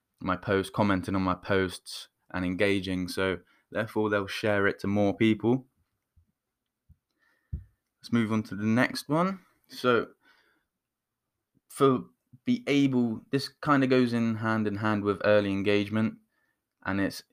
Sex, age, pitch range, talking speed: male, 10-29, 100-115 Hz, 140 wpm